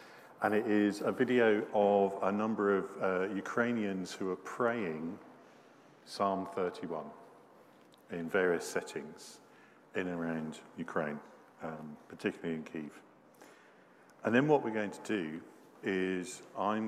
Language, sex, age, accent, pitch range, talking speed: English, male, 50-69, British, 90-110 Hz, 130 wpm